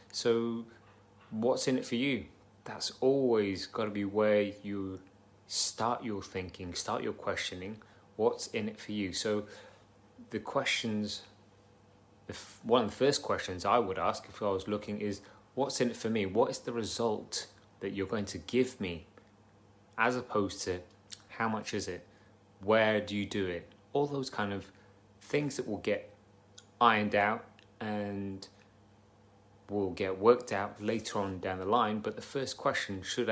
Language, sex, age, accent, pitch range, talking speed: English, male, 30-49, British, 100-110 Hz, 165 wpm